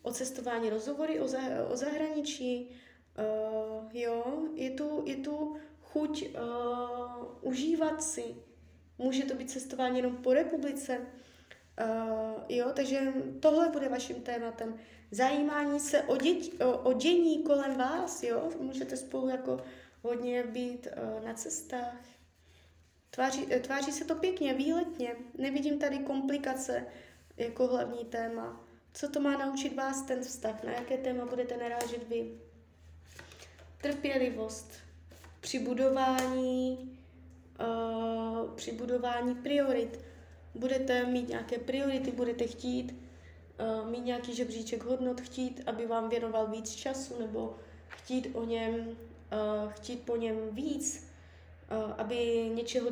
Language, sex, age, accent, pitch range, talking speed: Czech, female, 20-39, native, 225-270 Hz, 125 wpm